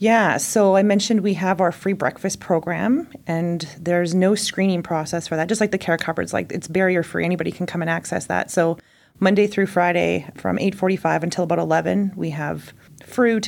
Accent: American